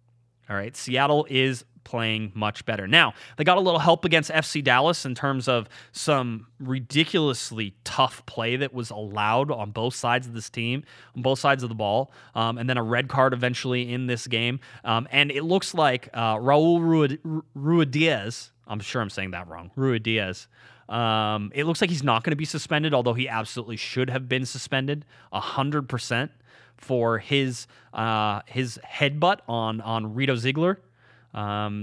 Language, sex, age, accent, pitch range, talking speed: English, male, 20-39, American, 120-150 Hz, 175 wpm